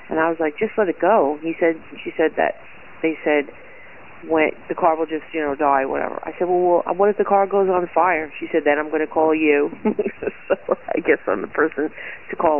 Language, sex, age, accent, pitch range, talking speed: English, female, 40-59, American, 150-175 Hz, 235 wpm